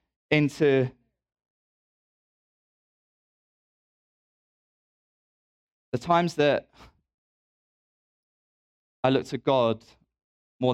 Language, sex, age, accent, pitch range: English, male, 20-39, British, 105-145 Hz